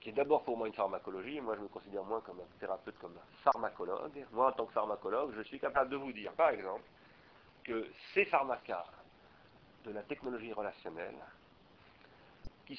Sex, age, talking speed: male, 50-69, 185 wpm